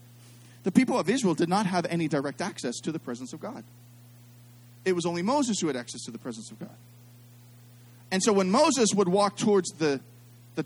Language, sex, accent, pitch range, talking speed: English, male, American, 120-175 Hz, 205 wpm